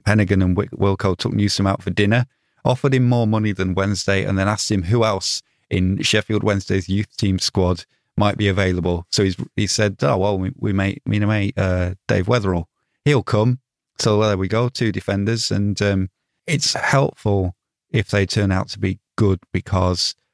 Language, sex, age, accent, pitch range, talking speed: English, male, 30-49, British, 90-105 Hz, 185 wpm